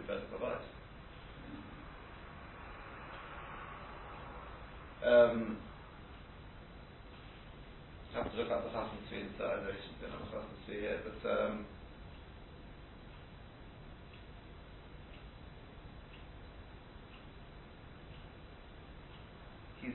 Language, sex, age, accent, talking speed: English, female, 50-69, British, 70 wpm